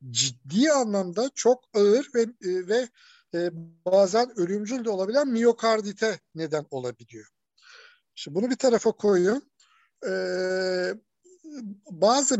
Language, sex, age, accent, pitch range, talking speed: Turkish, male, 60-79, native, 165-245 Hz, 100 wpm